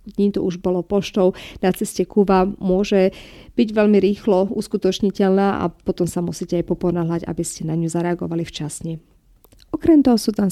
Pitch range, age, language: 180-235 Hz, 40-59, Slovak